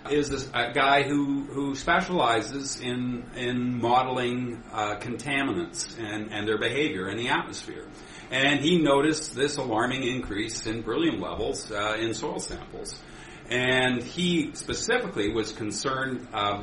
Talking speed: 135 wpm